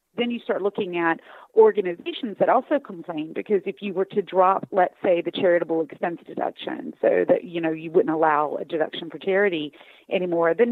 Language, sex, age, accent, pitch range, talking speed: English, female, 40-59, American, 170-210 Hz, 190 wpm